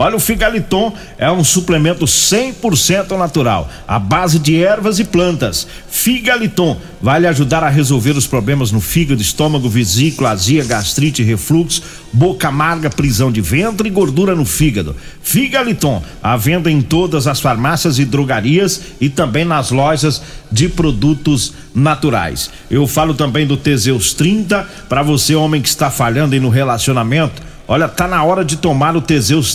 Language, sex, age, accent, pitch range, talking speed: Portuguese, male, 50-69, Brazilian, 135-180 Hz, 155 wpm